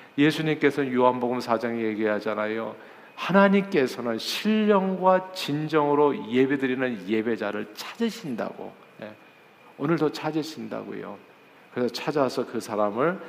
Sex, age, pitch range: male, 40-59, 120-175 Hz